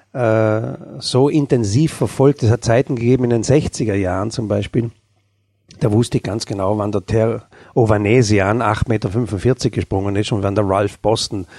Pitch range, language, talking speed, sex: 100-120 Hz, German, 160 wpm, male